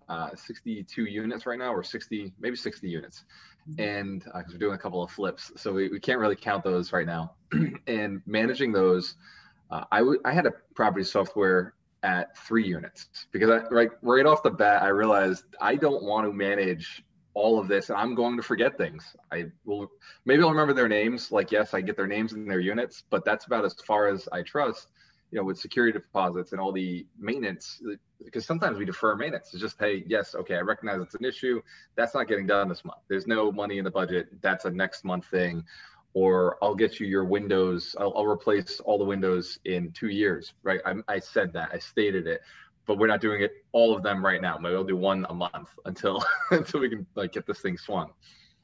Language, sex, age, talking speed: English, male, 20-39, 220 wpm